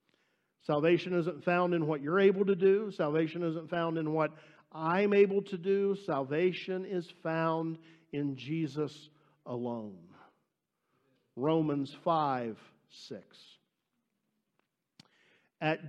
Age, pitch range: 50-69, 150-200 Hz